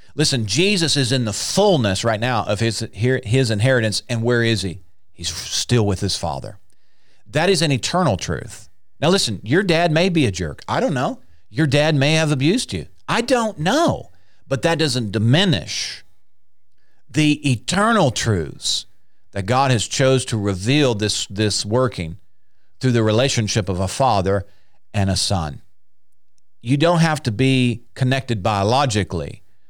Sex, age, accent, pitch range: male, 50-69, American, 100-140 Hz